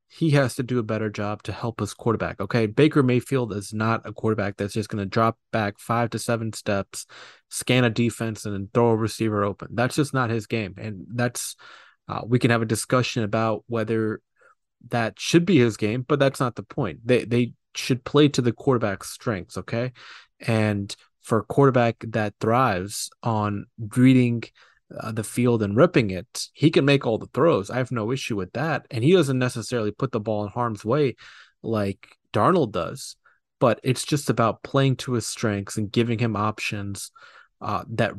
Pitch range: 105-125 Hz